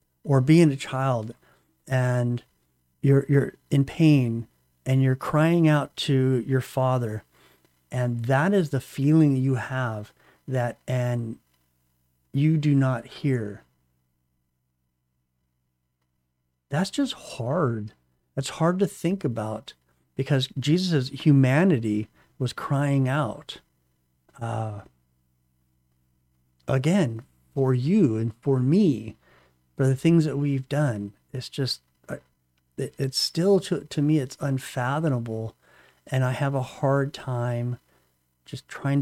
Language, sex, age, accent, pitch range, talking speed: English, male, 40-59, American, 95-145 Hz, 110 wpm